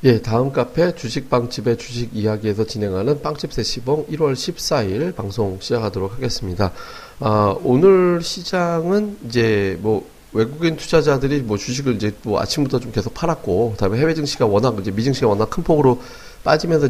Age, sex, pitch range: 40-59, male, 105-145 Hz